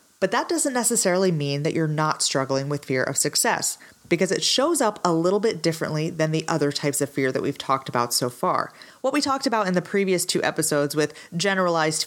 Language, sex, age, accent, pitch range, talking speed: English, female, 30-49, American, 145-205 Hz, 220 wpm